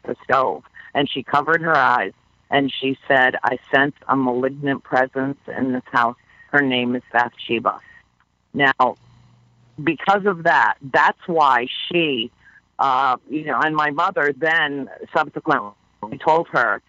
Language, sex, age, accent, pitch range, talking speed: English, female, 50-69, American, 130-165 Hz, 140 wpm